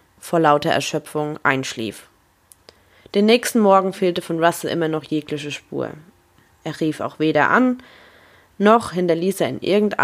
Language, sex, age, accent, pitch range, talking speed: German, female, 20-39, German, 160-195 Hz, 145 wpm